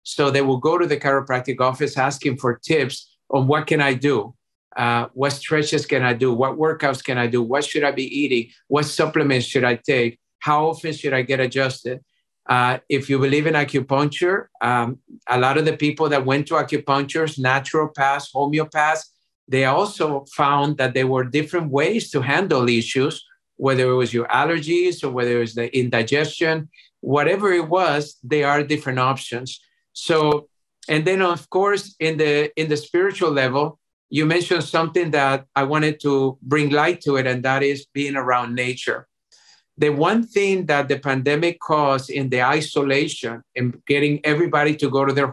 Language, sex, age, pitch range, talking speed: English, male, 50-69, 130-155 Hz, 180 wpm